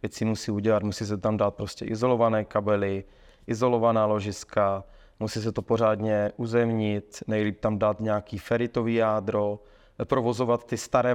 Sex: male